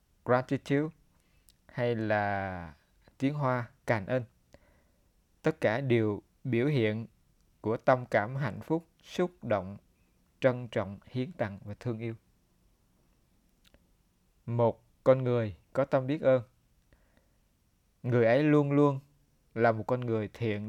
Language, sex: Vietnamese, male